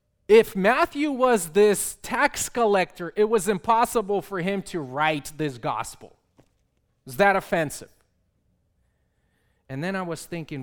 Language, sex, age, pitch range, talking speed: English, male, 30-49, 125-185 Hz, 130 wpm